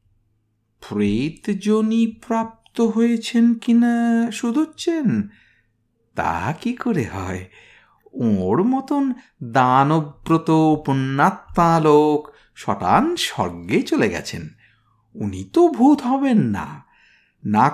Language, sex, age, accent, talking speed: Bengali, male, 50-69, native, 80 wpm